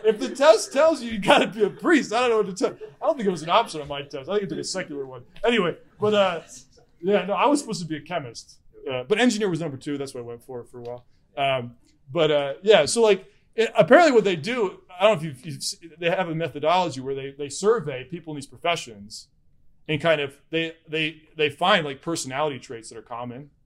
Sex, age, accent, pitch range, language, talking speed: male, 20-39, American, 140-205 Hz, English, 260 wpm